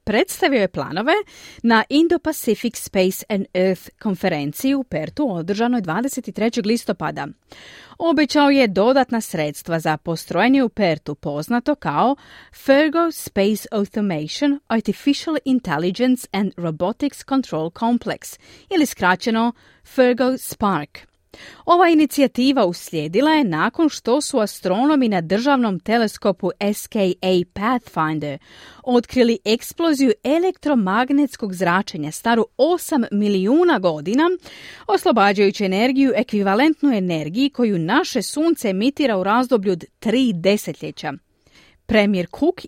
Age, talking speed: 30-49, 100 wpm